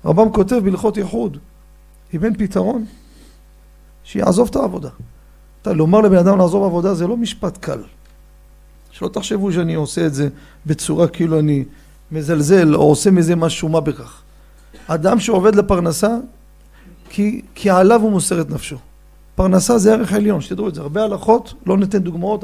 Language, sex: Hebrew, male